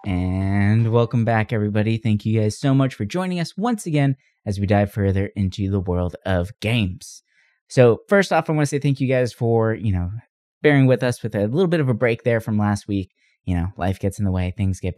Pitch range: 95-120 Hz